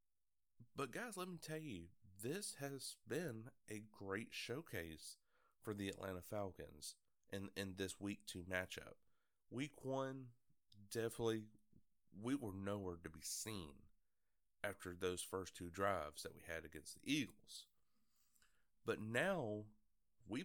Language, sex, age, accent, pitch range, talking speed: English, male, 30-49, American, 95-125 Hz, 130 wpm